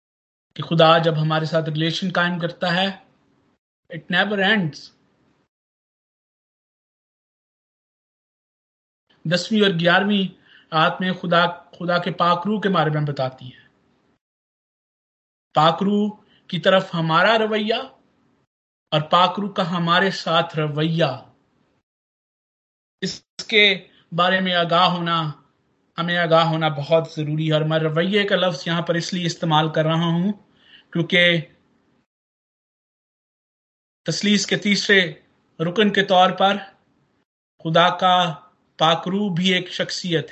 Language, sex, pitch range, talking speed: Hindi, male, 160-185 Hz, 105 wpm